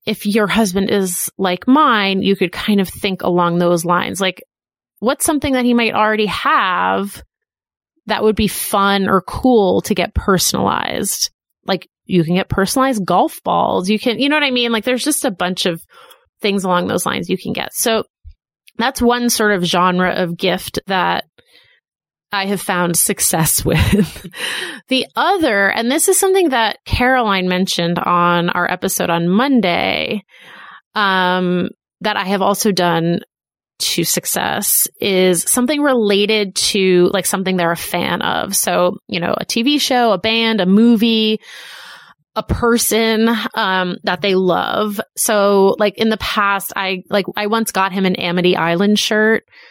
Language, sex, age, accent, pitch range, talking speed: English, female, 30-49, American, 185-225 Hz, 165 wpm